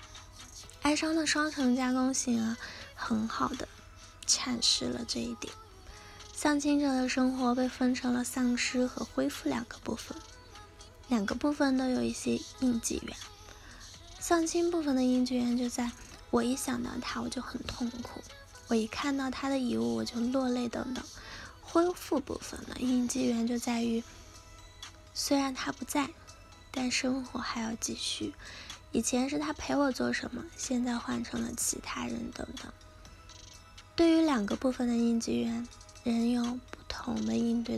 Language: Chinese